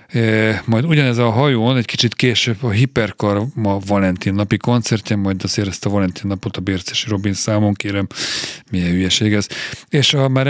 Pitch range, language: 100-115 Hz, Hungarian